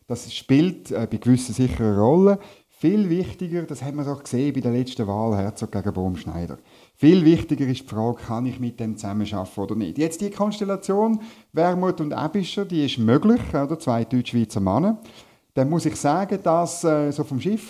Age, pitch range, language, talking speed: 50-69, 115-170 Hz, German, 190 wpm